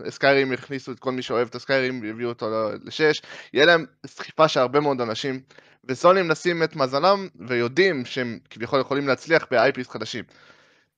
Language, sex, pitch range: Hebrew, male, 130-175 Hz